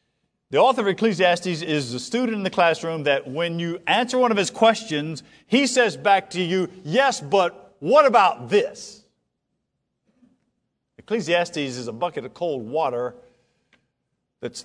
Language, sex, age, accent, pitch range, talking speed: English, male, 50-69, American, 145-230 Hz, 150 wpm